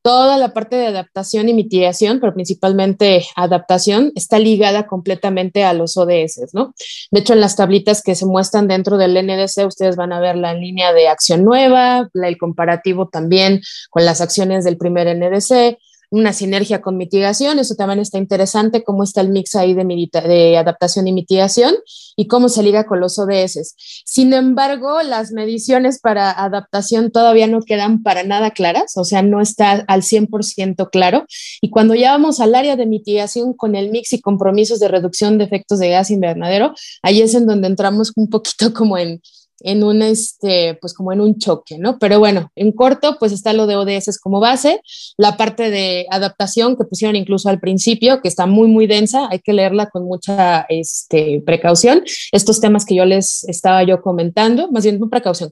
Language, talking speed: Spanish, 185 wpm